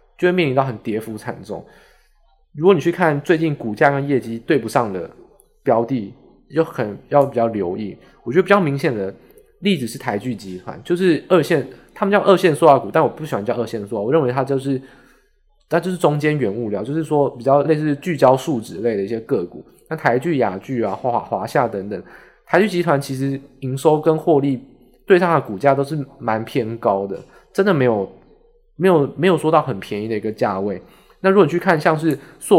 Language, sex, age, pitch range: Chinese, male, 20-39, 120-175 Hz